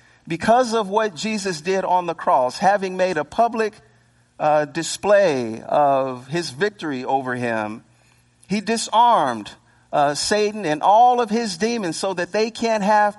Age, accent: 50-69, American